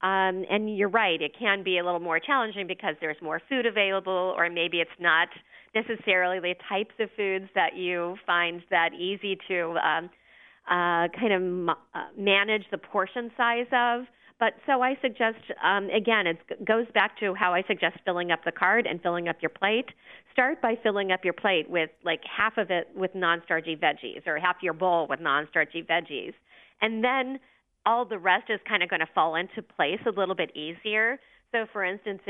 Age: 40-59